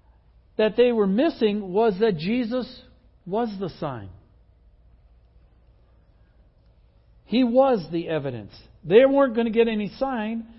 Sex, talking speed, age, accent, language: male, 120 wpm, 60-79, American, English